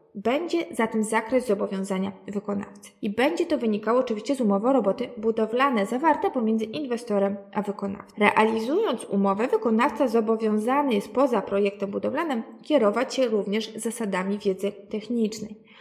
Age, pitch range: 20-39, 200-250 Hz